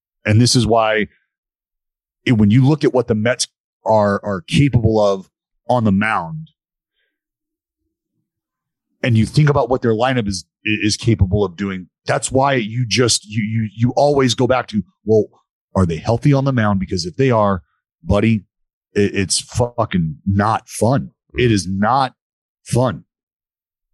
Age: 40-59